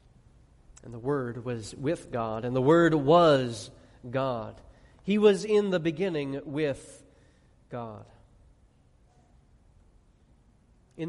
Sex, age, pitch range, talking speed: male, 30-49, 140-200 Hz, 105 wpm